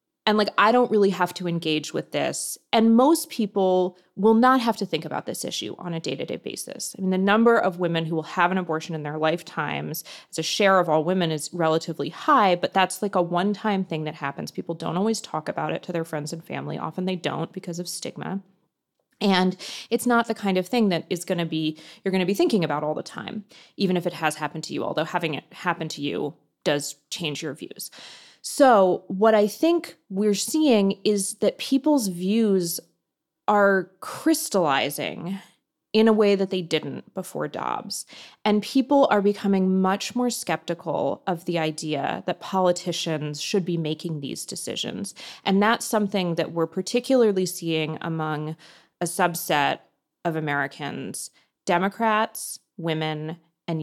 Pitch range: 160-210 Hz